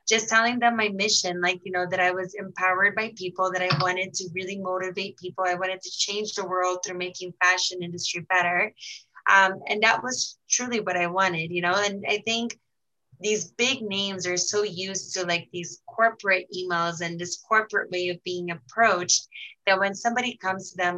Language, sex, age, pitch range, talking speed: English, female, 20-39, 180-200 Hz, 195 wpm